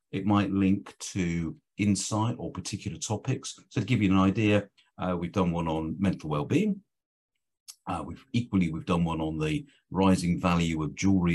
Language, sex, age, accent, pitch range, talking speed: English, male, 50-69, British, 90-110 Hz, 175 wpm